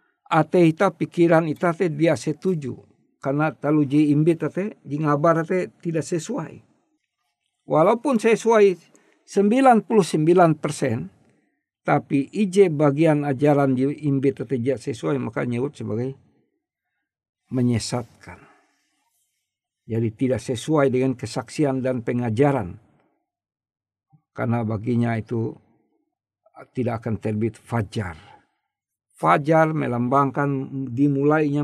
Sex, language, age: male, Indonesian, 50-69